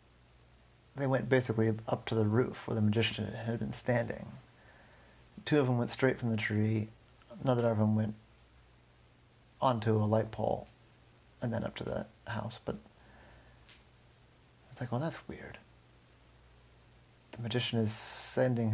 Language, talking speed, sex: English, 145 wpm, male